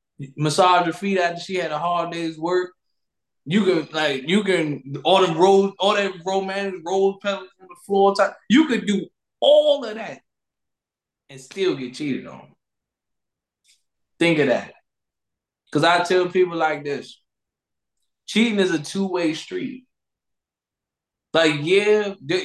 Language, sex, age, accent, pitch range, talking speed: English, male, 20-39, American, 150-200 Hz, 140 wpm